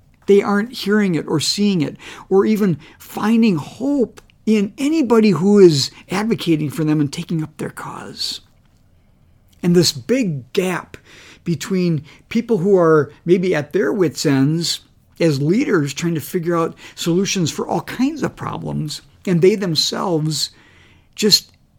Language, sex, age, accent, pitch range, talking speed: English, male, 50-69, American, 130-185 Hz, 145 wpm